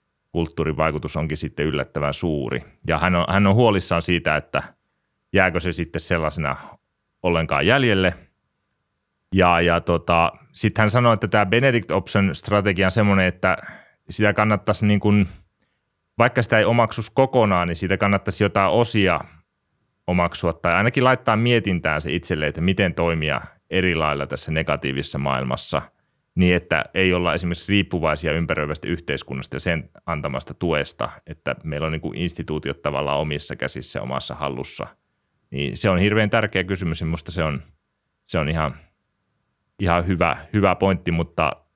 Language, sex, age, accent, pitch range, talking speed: Finnish, male, 30-49, native, 80-95 Hz, 145 wpm